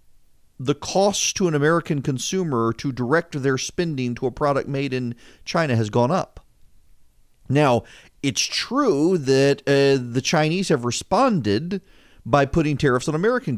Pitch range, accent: 115-145 Hz, American